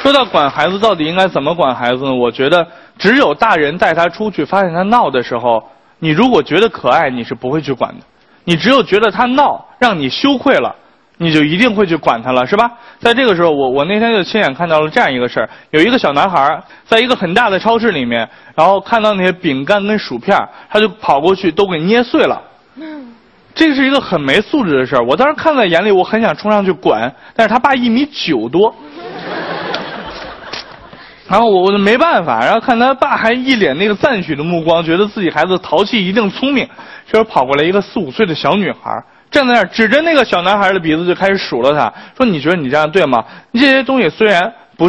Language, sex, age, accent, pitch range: Chinese, male, 20-39, native, 165-240 Hz